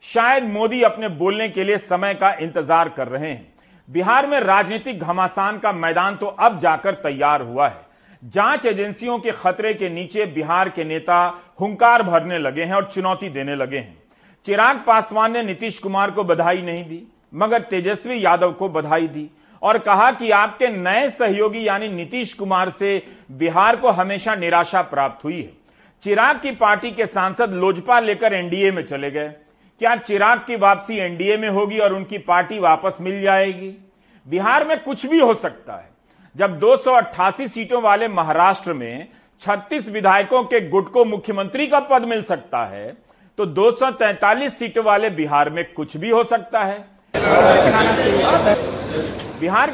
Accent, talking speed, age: native, 165 wpm, 40-59